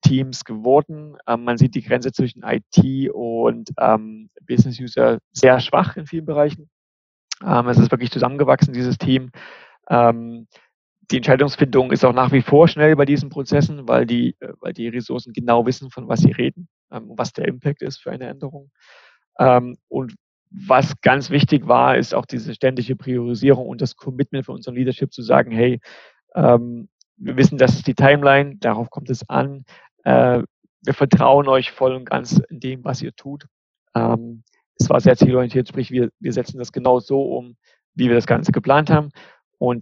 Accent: German